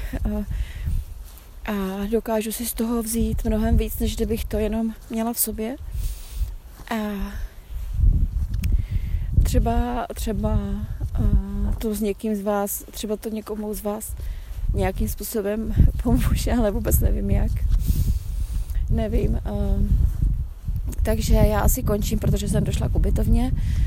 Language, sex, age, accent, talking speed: Czech, female, 30-49, native, 120 wpm